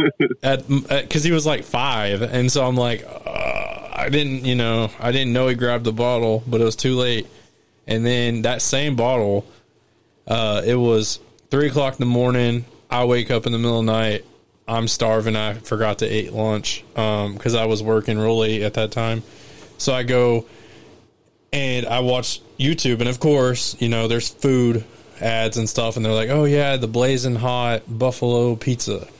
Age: 20-39